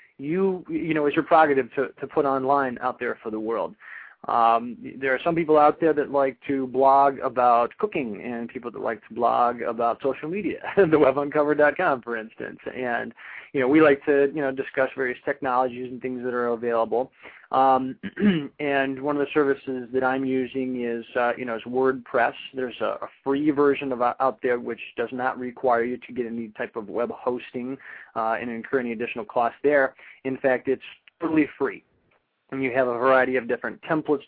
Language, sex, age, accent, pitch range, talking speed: English, male, 20-39, American, 125-145 Hz, 195 wpm